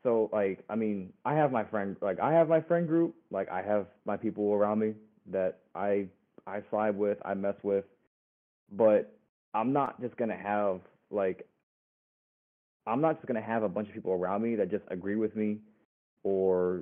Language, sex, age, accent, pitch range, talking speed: English, male, 20-39, American, 95-110 Hz, 190 wpm